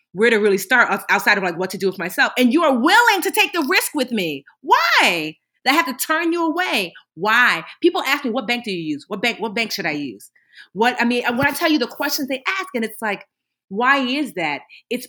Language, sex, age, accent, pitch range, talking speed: English, female, 30-49, American, 190-265 Hz, 255 wpm